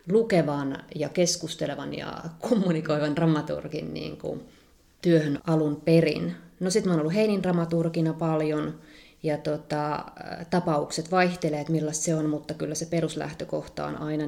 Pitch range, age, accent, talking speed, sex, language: 150-170 Hz, 30-49, native, 130 wpm, female, Finnish